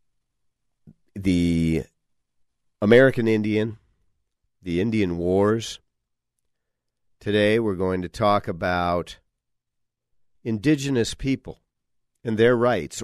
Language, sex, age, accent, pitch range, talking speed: English, male, 50-69, American, 85-110 Hz, 80 wpm